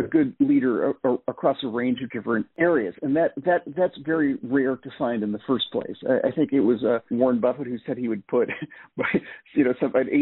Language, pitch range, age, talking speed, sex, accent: English, 125-175 Hz, 50-69, 235 wpm, male, American